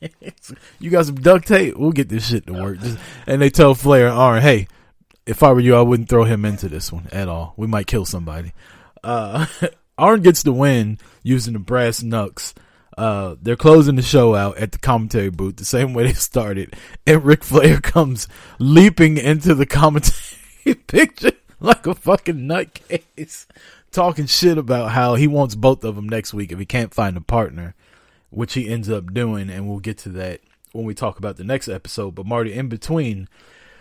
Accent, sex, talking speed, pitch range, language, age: American, male, 195 wpm, 95-130 Hz, English, 20-39